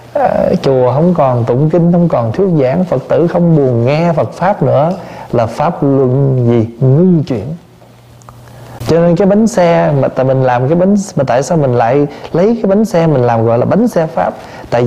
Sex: male